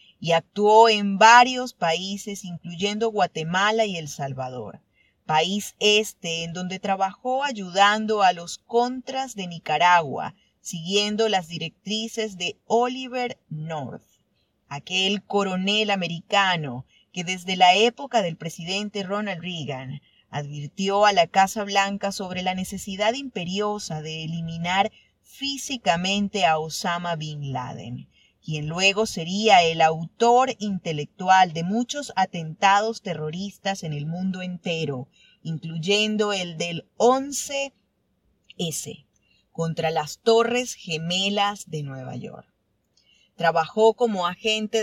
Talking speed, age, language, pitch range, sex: 110 wpm, 30-49, Spanish, 165-210 Hz, female